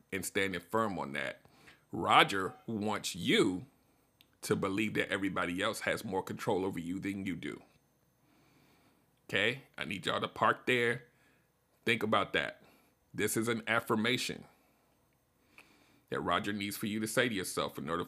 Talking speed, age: 155 wpm, 40-59